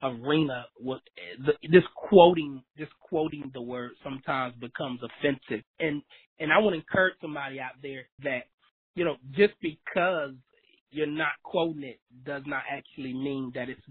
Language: English